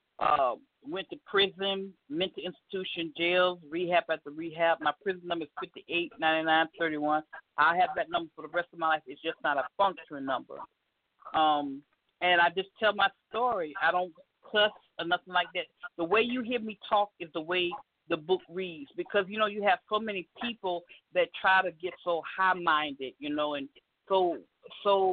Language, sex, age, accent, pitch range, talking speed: English, female, 50-69, American, 170-210 Hz, 180 wpm